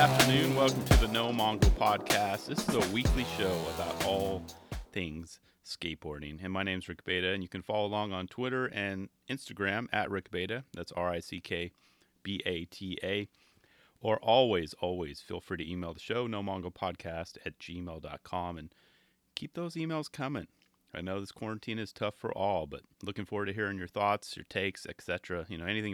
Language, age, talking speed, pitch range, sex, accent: English, 30-49, 180 wpm, 90-115 Hz, male, American